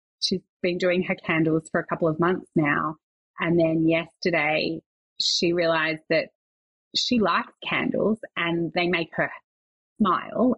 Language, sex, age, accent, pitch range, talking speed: English, female, 30-49, Australian, 165-225 Hz, 140 wpm